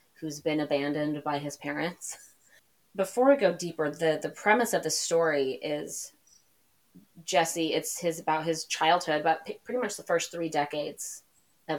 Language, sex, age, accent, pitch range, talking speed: English, female, 30-49, American, 145-170 Hz, 155 wpm